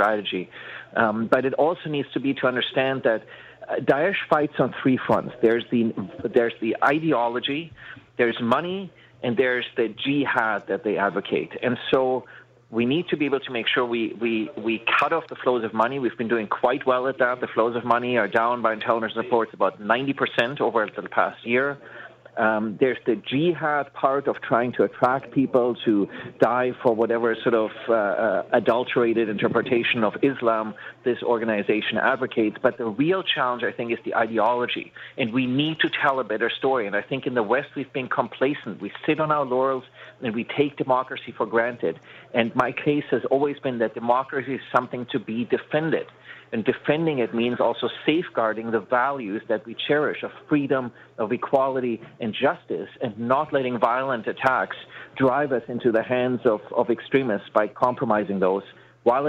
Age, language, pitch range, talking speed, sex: 30-49, English, 115-135 Hz, 185 wpm, male